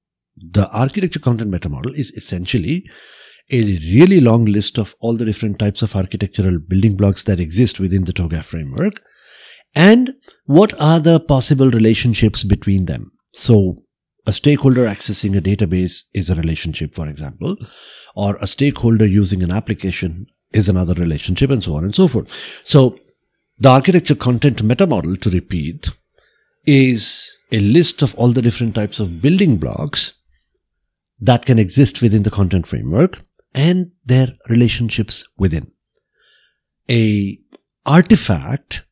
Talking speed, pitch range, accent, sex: 140 wpm, 100-140 Hz, Indian, male